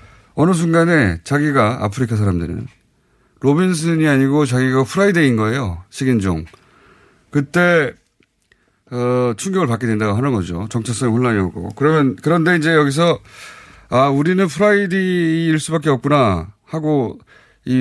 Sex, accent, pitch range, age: male, native, 105-150 Hz, 30-49